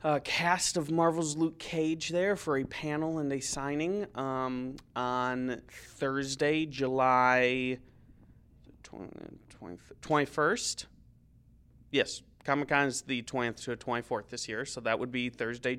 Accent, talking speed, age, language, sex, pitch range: American, 125 wpm, 30-49, English, male, 120-145 Hz